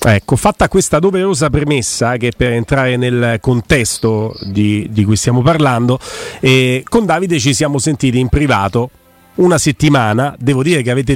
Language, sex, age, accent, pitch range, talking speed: Italian, male, 40-59, native, 125-155 Hz, 160 wpm